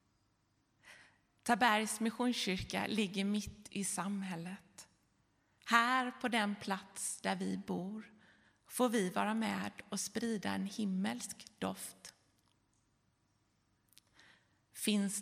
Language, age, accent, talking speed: Swedish, 30-49, native, 90 wpm